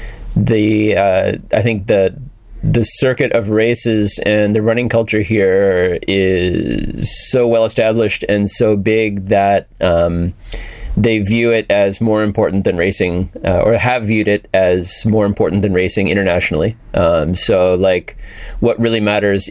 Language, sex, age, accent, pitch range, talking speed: Russian, male, 30-49, American, 95-115 Hz, 150 wpm